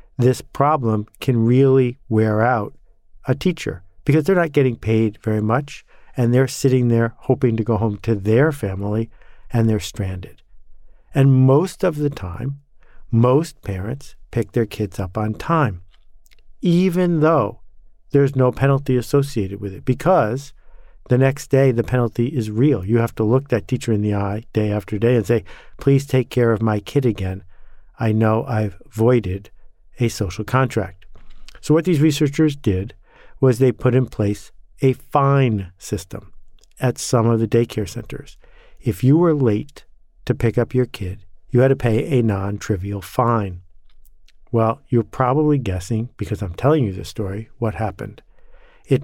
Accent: American